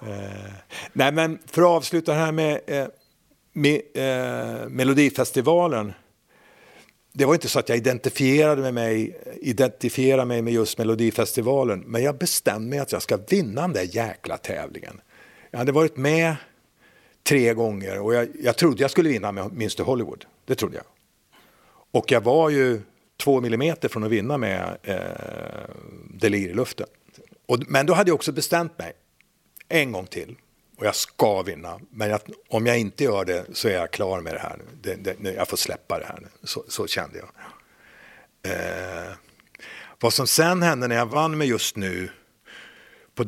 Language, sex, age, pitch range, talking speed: English, male, 50-69, 110-150 Hz, 170 wpm